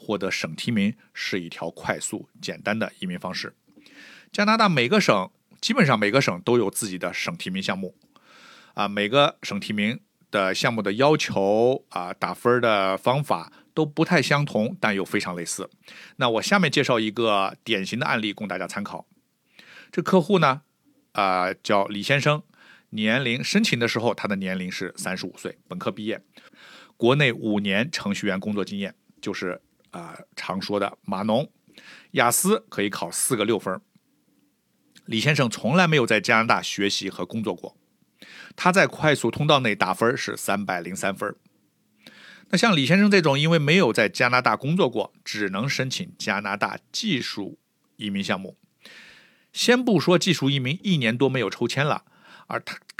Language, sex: Chinese, male